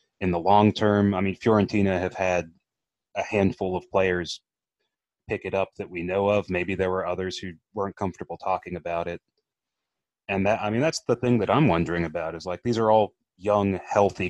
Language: English